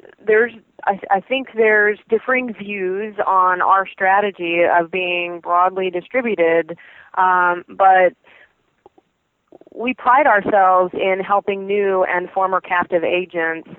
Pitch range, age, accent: 175-200 Hz, 20-39, American